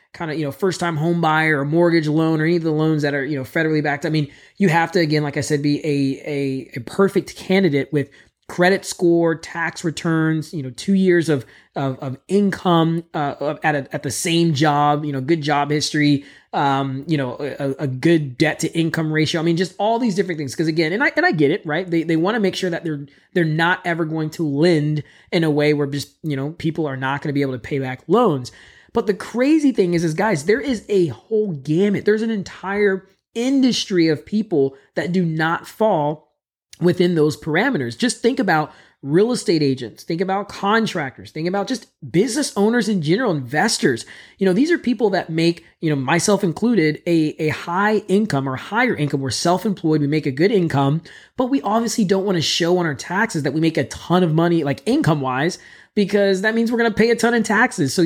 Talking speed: 225 wpm